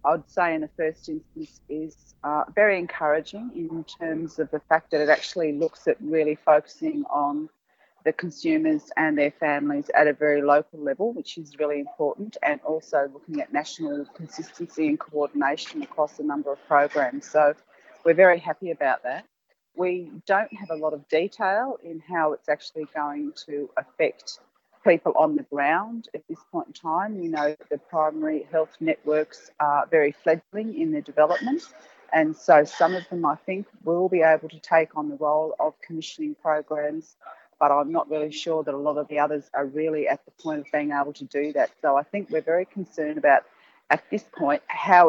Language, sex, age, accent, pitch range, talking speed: English, female, 40-59, Australian, 150-180 Hz, 190 wpm